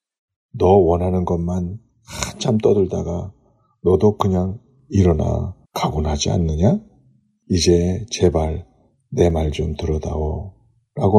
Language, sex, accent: Korean, male, native